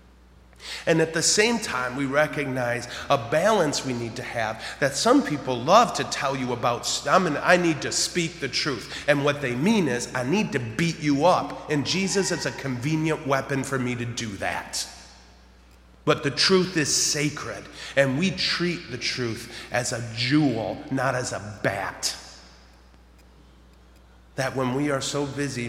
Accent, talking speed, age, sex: American, 170 wpm, 30-49, male